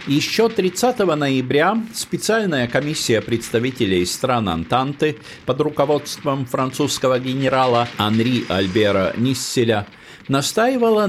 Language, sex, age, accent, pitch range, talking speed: Russian, male, 50-69, native, 105-175 Hz, 85 wpm